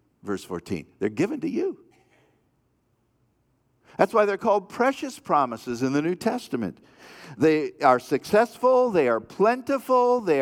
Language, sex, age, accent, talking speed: English, male, 50-69, American, 130 wpm